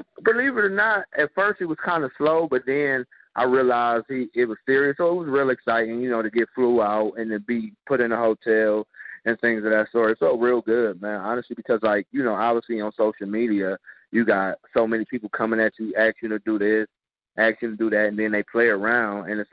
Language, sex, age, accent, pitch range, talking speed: English, male, 30-49, American, 105-120 Hz, 250 wpm